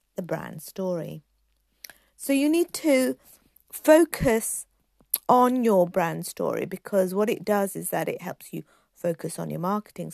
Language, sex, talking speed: English, female, 150 wpm